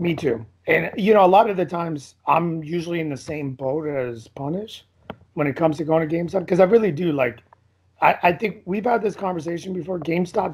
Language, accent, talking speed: English, American, 220 wpm